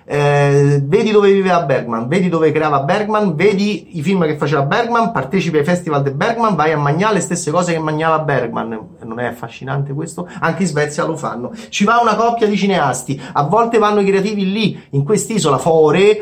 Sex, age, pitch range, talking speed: male, 30-49, 150-205 Hz, 195 wpm